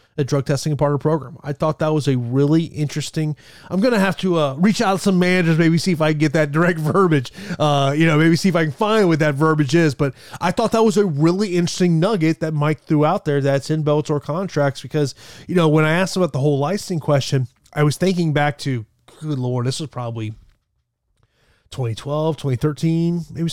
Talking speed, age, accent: 220 wpm, 30-49, American